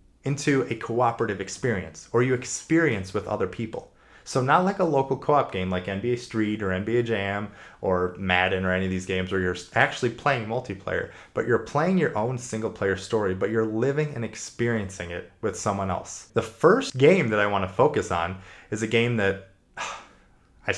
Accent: American